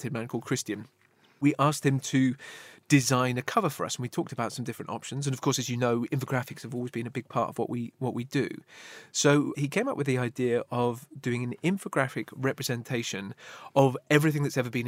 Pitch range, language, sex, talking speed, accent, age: 120-150 Hz, English, male, 220 wpm, British, 30-49